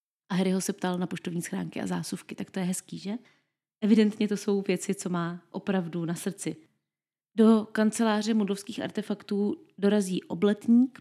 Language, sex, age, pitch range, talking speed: Czech, female, 30-49, 185-225 Hz, 165 wpm